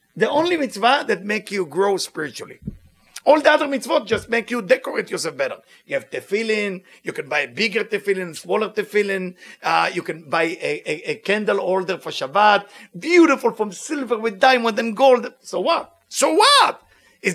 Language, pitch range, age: English, 200-255 Hz, 50-69